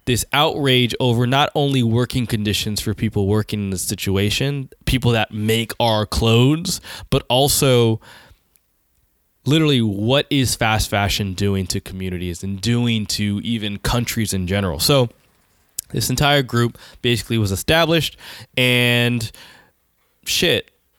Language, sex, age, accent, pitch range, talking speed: English, male, 20-39, American, 105-130 Hz, 125 wpm